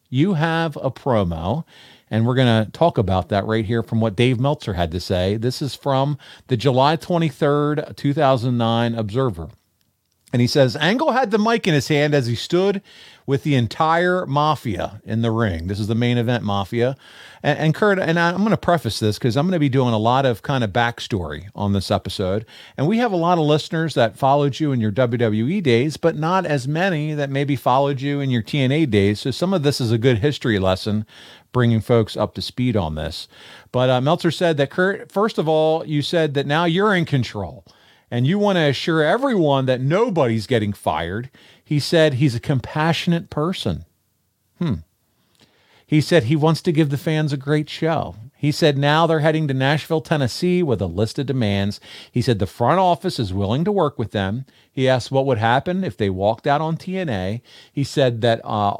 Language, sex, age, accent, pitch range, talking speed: English, male, 50-69, American, 115-155 Hz, 205 wpm